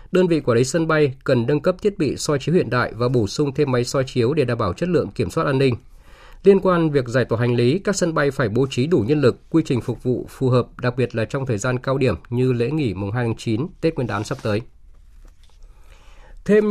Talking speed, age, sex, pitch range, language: 265 wpm, 20-39, male, 115-150 Hz, Vietnamese